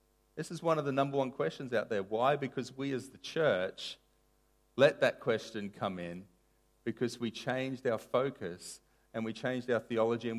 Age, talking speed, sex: 30-49, 185 wpm, male